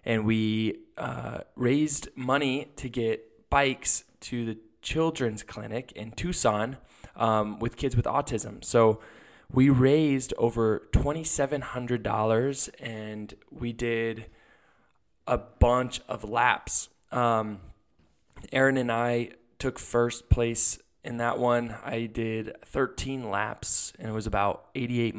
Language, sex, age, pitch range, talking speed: English, male, 20-39, 105-125 Hz, 120 wpm